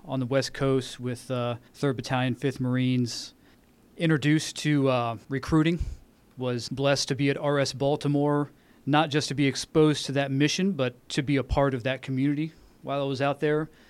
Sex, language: male, English